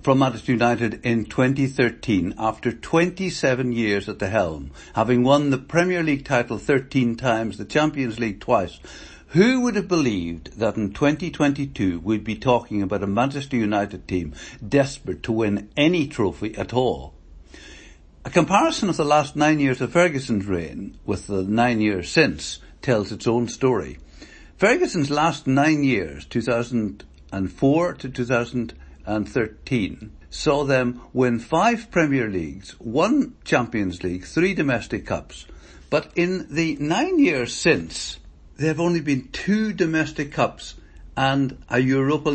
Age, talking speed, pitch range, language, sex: 60-79, 145 wpm, 105-155 Hz, English, male